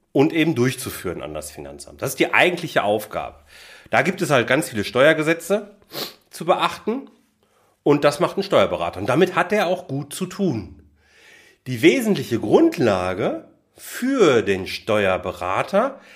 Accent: German